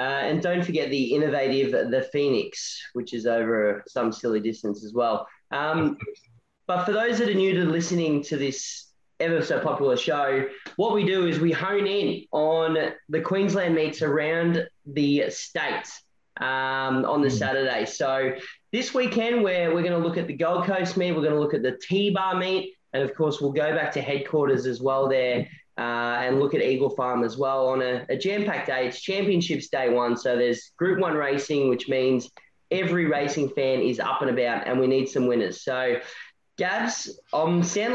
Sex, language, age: male, English, 20-39